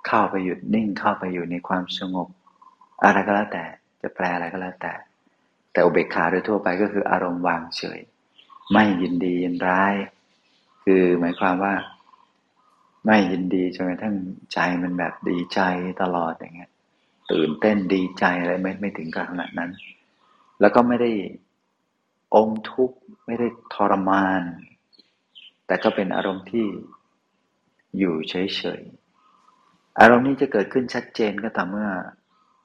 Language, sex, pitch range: Thai, male, 90-110 Hz